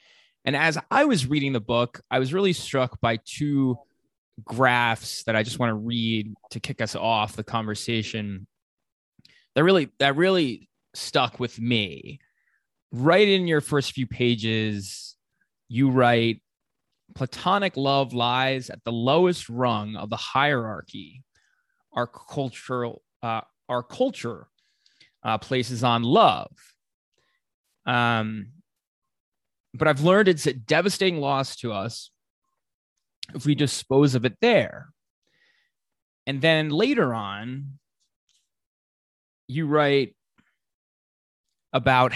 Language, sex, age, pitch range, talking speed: English, male, 20-39, 110-140 Hz, 115 wpm